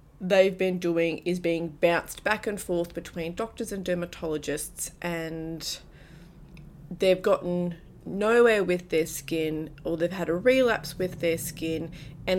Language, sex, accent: English, female, Australian